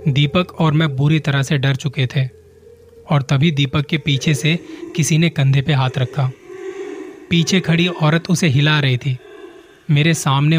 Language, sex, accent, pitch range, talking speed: Hindi, male, native, 130-160 Hz, 170 wpm